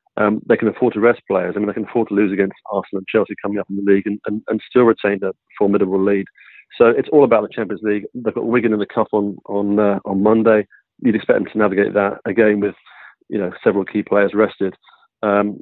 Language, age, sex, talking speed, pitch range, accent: English, 40-59, male, 245 wpm, 100-110 Hz, British